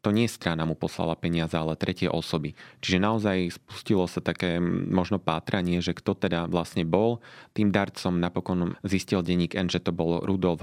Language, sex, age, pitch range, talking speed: Slovak, male, 30-49, 85-95 Hz, 170 wpm